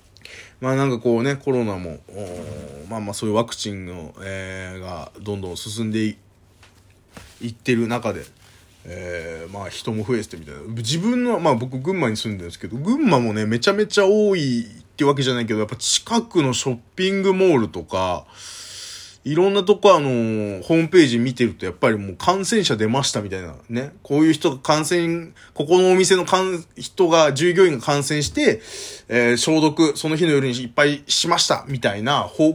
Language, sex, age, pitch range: Japanese, male, 20-39, 100-155 Hz